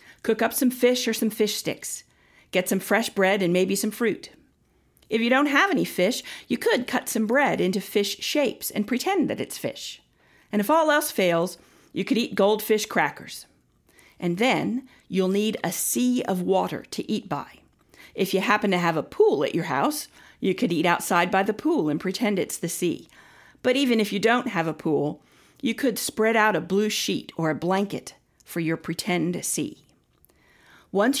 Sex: female